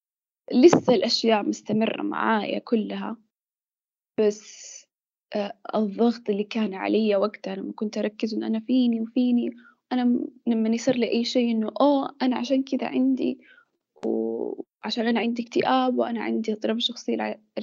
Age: 10-29